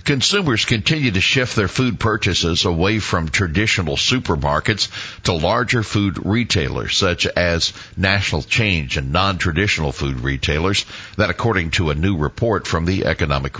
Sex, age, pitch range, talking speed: male, 60-79, 85-105 Hz, 140 wpm